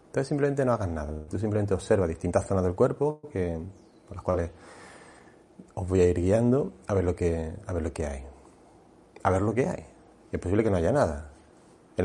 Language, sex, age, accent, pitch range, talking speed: Spanish, male, 30-49, Spanish, 80-100 Hz, 210 wpm